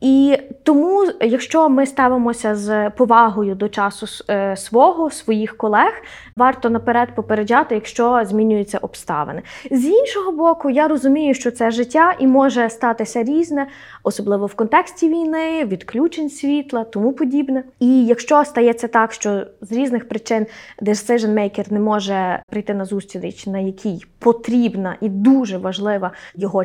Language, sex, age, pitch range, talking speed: Ukrainian, female, 20-39, 215-270 Hz, 135 wpm